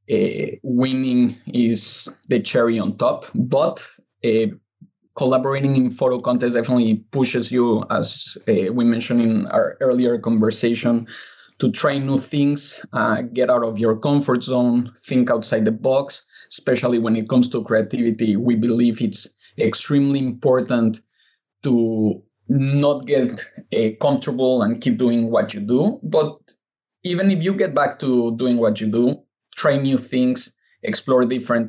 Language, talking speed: English, 145 wpm